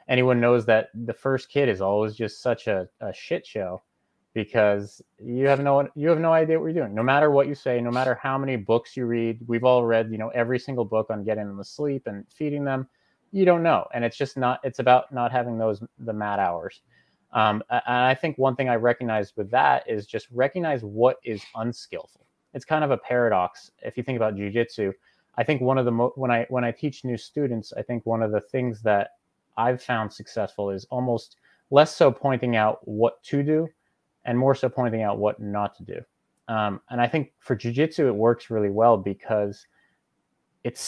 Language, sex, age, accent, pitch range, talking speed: English, male, 30-49, American, 110-130 Hz, 215 wpm